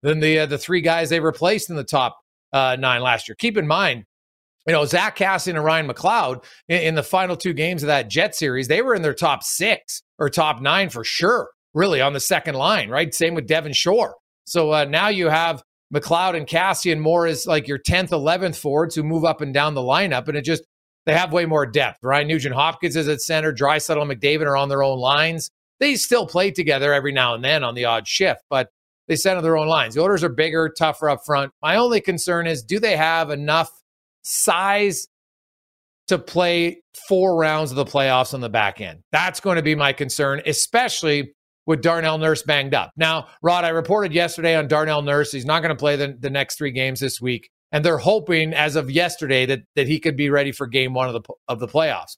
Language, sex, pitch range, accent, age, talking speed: English, male, 140-170 Hz, American, 40-59, 225 wpm